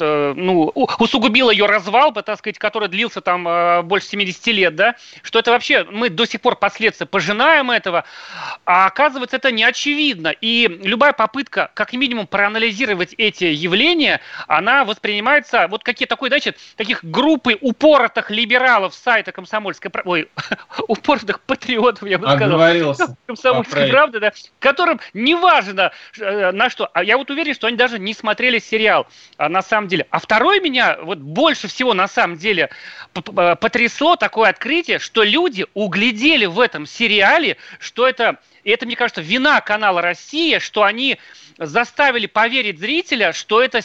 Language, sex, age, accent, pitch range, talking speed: Russian, male, 30-49, native, 200-260 Hz, 145 wpm